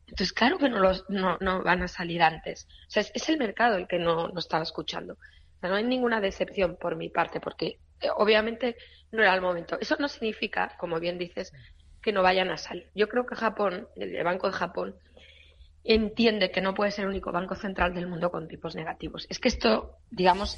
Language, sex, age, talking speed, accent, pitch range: Spanish, female, 20-39, 220 wpm, Spanish, 170-210 Hz